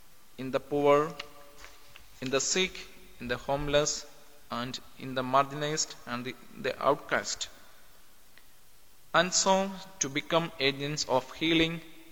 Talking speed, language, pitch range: 120 wpm, English, 130-165 Hz